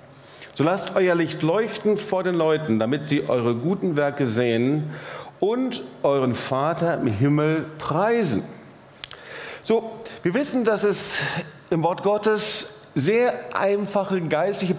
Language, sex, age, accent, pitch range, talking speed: German, male, 50-69, German, 135-195 Hz, 125 wpm